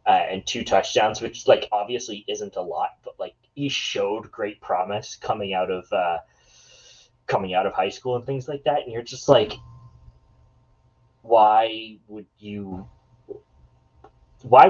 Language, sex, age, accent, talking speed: English, male, 20-39, American, 150 wpm